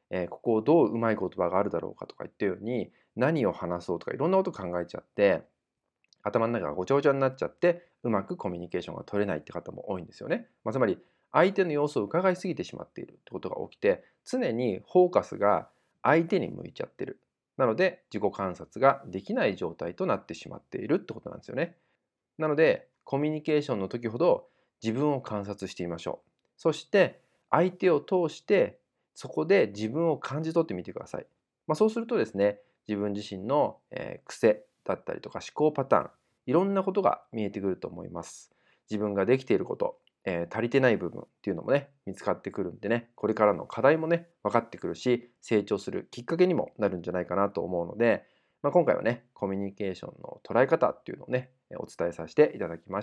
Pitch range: 100-165 Hz